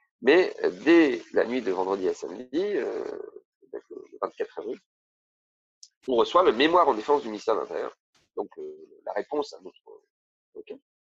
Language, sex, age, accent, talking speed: French, male, 40-59, French, 150 wpm